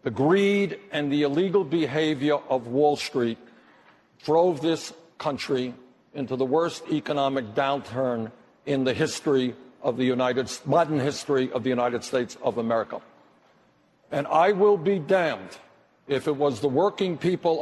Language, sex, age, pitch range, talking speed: English, male, 60-79, 160-230 Hz, 145 wpm